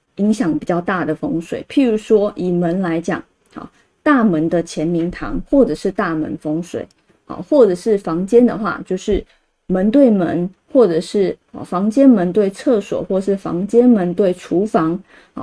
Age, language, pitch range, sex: 30-49, Chinese, 180-240 Hz, female